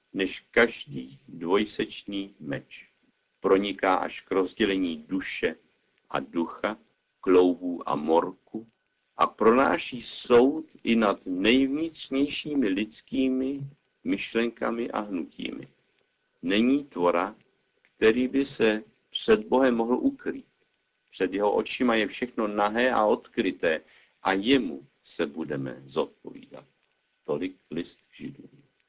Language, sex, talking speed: Czech, male, 100 wpm